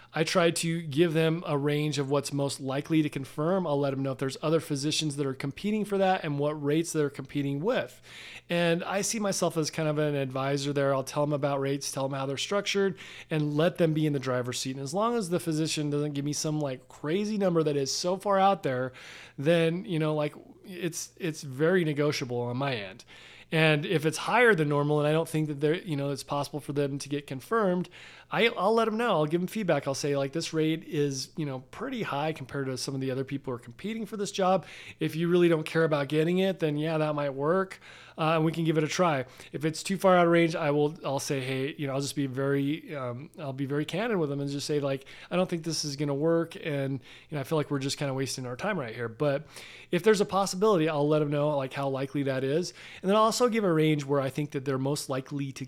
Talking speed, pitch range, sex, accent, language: 265 wpm, 140-170 Hz, male, American, English